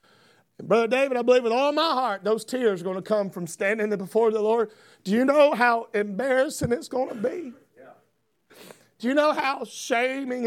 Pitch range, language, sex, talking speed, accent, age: 220-270 Hz, English, male, 195 wpm, American, 40-59